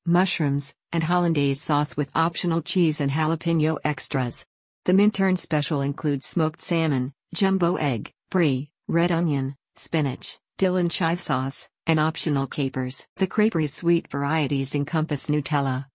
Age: 50-69